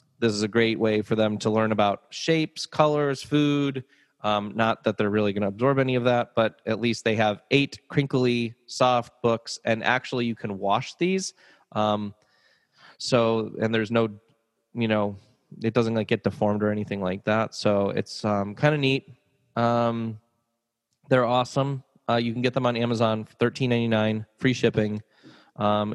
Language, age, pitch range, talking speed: English, 20-39, 105-125 Hz, 170 wpm